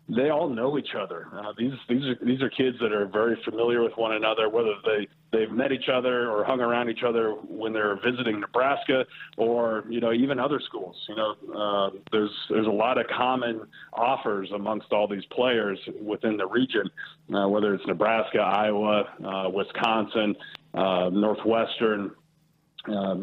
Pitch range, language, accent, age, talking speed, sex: 105-120 Hz, English, American, 30-49, 175 wpm, male